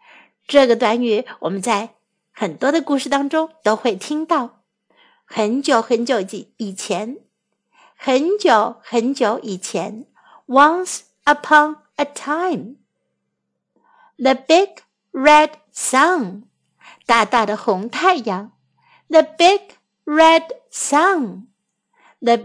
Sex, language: female, Chinese